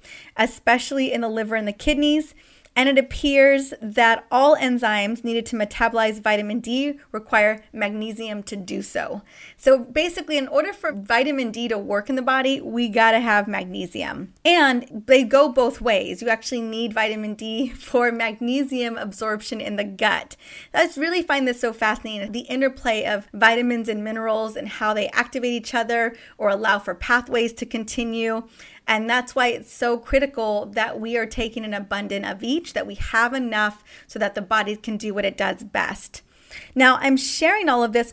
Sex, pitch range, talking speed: female, 220-260 Hz, 180 wpm